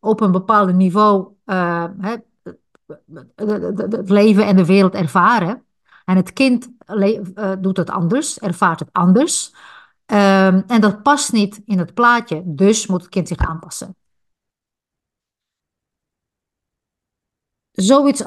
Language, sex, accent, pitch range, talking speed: Dutch, female, Dutch, 180-220 Hz, 115 wpm